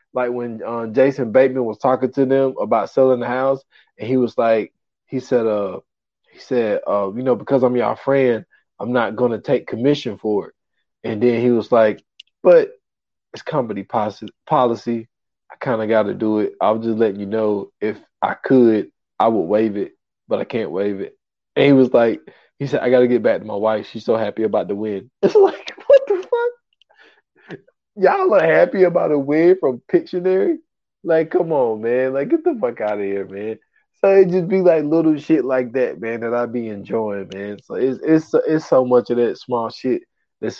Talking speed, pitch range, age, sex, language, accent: 205 wpm, 110-155 Hz, 20-39, male, English, American